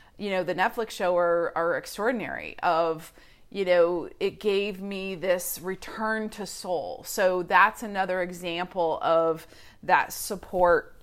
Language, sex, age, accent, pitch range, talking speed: English, female, 30-49, American, 175-220 Hz, 135 wpm